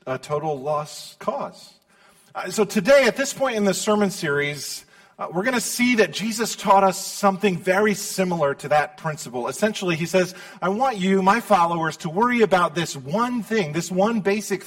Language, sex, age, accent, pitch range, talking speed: English, male, 40-59, American, 155-200 Hz, 190 wpm